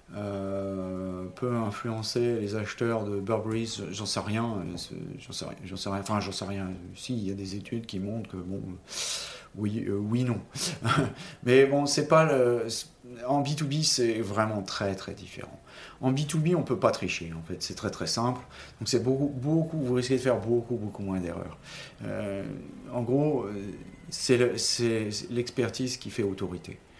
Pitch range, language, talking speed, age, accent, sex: 100-130 Hz, French, 175 wpm, 40-59, French, male